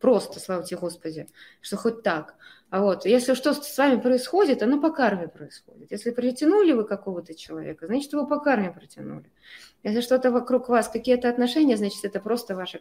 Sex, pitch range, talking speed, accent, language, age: female, 185-255 Hz, 180 wpm, native, Russian, 20-39